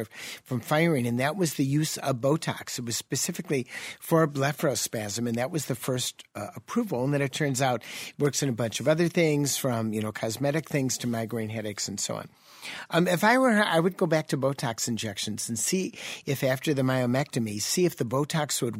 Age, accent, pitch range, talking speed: 50-69, American, 125-160 Hz, 215 wpm